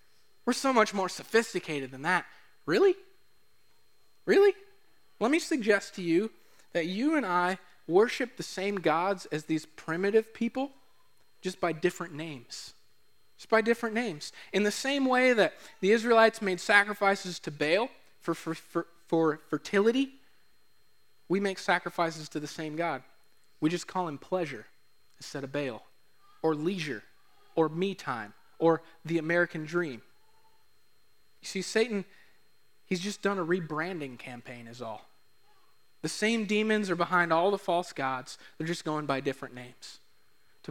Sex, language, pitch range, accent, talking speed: male, English, 155-205 Hz, American, 145 wpm